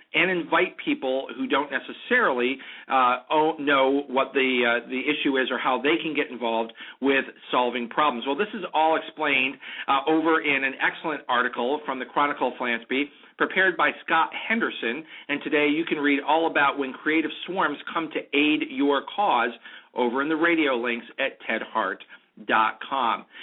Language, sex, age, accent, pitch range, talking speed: English, male, 40-59, American, 135-170 Hz, 175 wpm